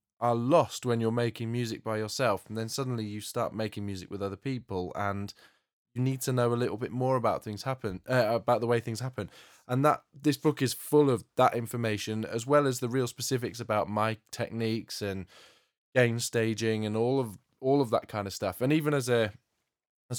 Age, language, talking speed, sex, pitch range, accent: 20-39, English, 205 wpm, male, 110-130 Hz, British